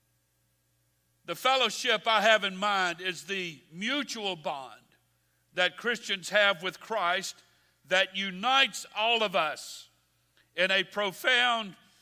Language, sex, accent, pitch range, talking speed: English, male, American, 165-215 Hz, 115 wpm